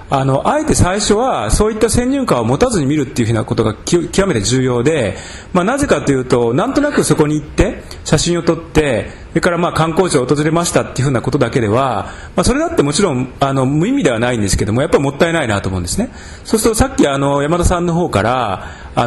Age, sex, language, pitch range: 40-59, male, Japanese, 125-185 Hz